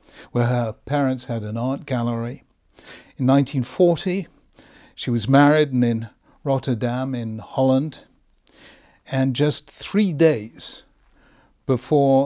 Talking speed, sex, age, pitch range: 105 wpm, male, 60-79, 120-145 Hz